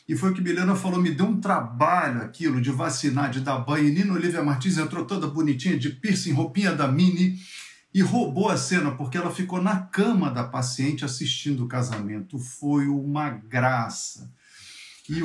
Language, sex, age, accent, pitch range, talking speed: Portuguese, male, 50-69, Brazilian, 125-165 Hz, 180 wpm